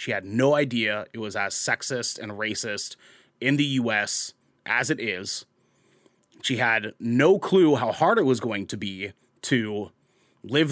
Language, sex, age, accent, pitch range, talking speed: English, male, 30-49, American, 105-130 Hz, 160 wpm